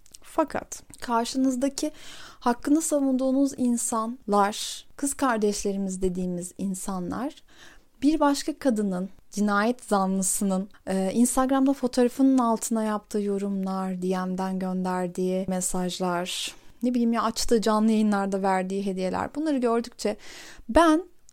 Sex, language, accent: female, Turkish, native